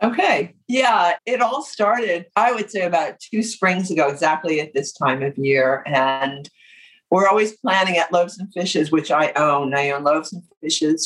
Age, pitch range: 50-69, 160-230 Hz